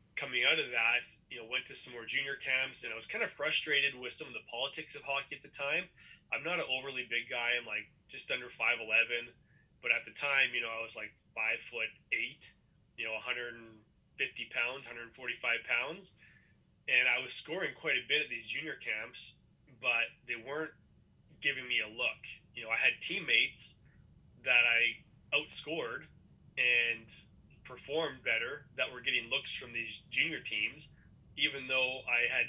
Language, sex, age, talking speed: English, male, 20-39, 175 wpm